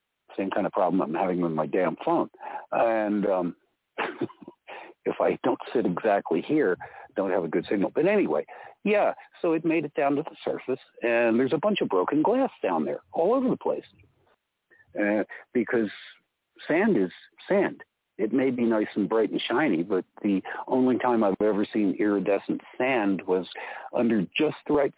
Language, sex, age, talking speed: English, male, 60-79, 180 wpm